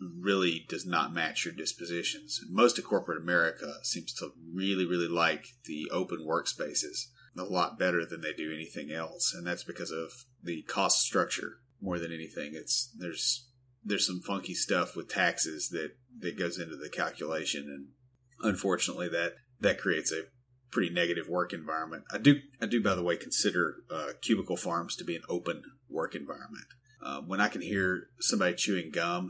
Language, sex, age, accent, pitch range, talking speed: English, male, 30-49, American, 90-110 Hz, 175 wpm